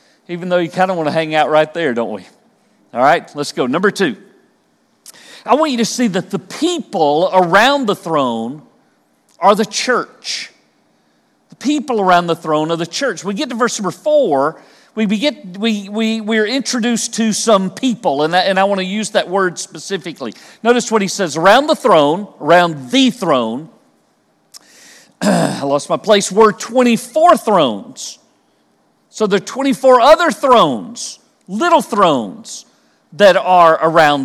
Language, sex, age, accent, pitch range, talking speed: English, male, 50-69, American, 180-240 Hz, 165 wpm